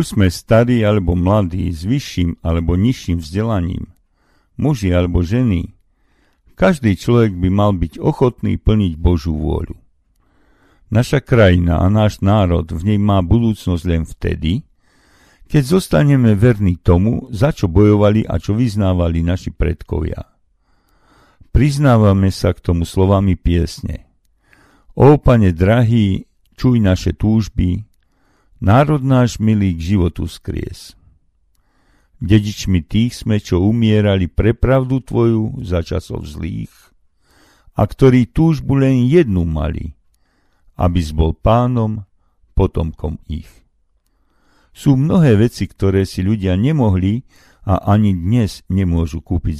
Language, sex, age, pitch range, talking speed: Slovak, male, 50-69, 85-115 Hz, 120 wpm